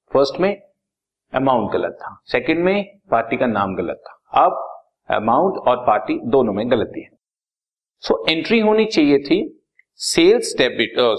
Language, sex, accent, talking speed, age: Hindi, male, native, 160 wpm, 50-69